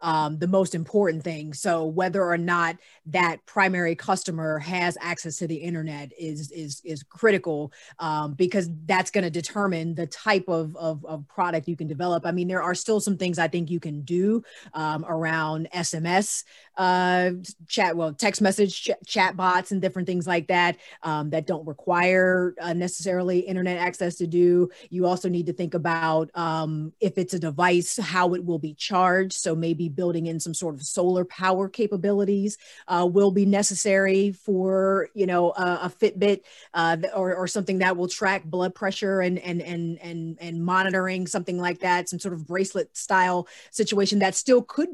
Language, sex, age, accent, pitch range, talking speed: English, female, 30-49, American, 165-195 Hz, 180 wpm